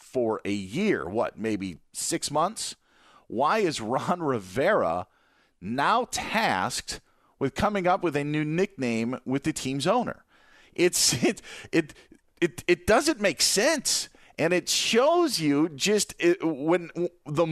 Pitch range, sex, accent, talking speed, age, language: 140-200 Hz, male, American, 135 wpm, 40-59, English